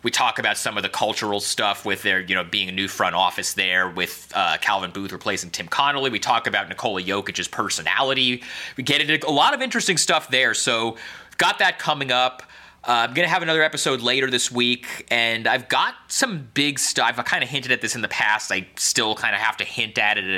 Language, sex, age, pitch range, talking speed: English, male, 30-49, 95-125 Hz, 235 wpm